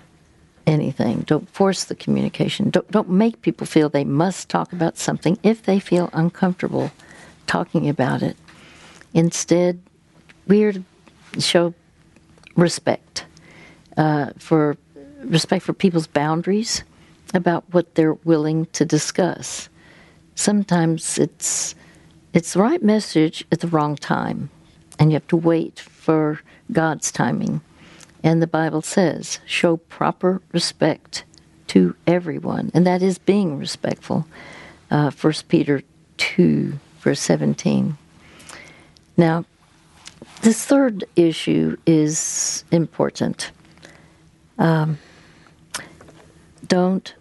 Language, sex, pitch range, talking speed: English, female, 150-185 Hz, 110 wpm